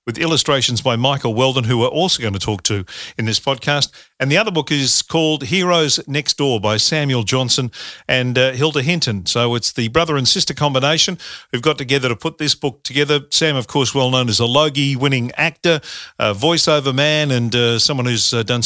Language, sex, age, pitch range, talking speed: English, male, 50-69, 120-155 Hz, 205 wpm